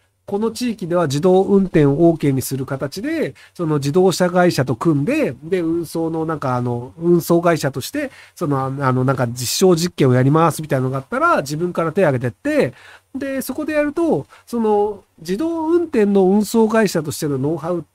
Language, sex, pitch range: Japanese, male, 135-210 Hz